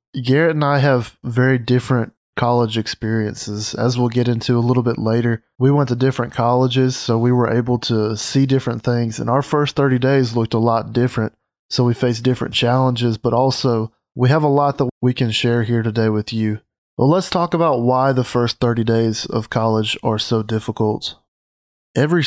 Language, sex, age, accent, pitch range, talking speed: English, male, 20-39, American, 115-130 Hz, 195 wpm